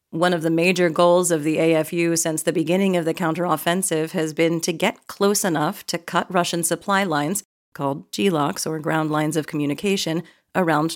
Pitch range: 160-190 Hz